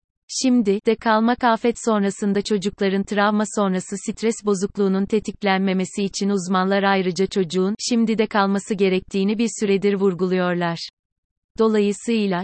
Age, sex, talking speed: 30-49, female, 110 wpm